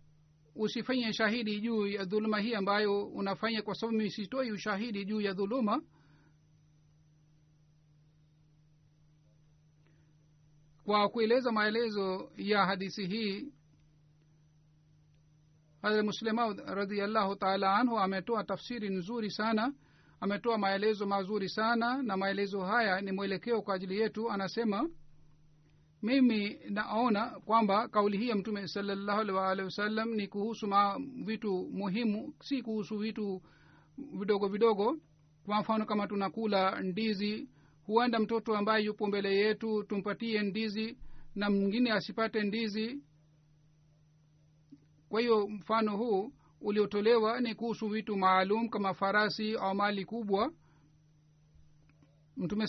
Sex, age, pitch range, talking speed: male, 50-69, 155-220 Hz, 110 wpm